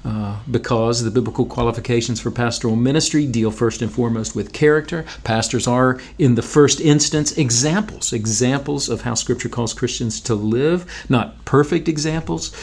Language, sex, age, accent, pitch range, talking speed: English, male, 40-59, American, 115-140 Hz, 150 wpm